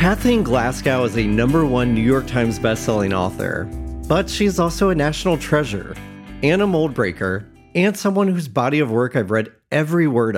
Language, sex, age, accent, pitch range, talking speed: English, male, 40-59, American, 115-165 Hz, 180 wpm